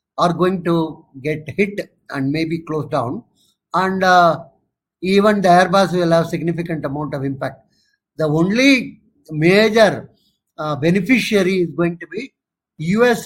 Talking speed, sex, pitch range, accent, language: 135 wpm, male, 145-185 Hz, Indian, English